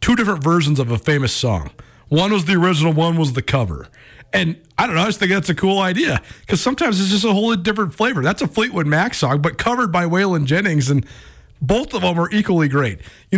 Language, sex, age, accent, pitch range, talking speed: English, male, 40-59, American, 150-190 Hz, 235 wpm